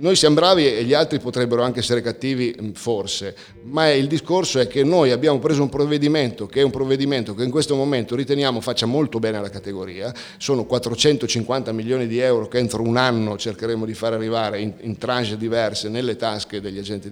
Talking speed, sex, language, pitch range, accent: 195 wpm, male, Italian, 105-130 Hz, native